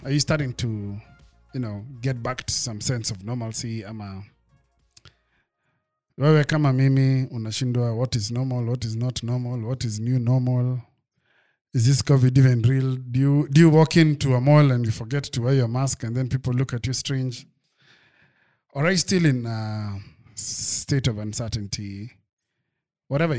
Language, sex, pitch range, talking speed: English, male, 110-135 Hz, 160 wpm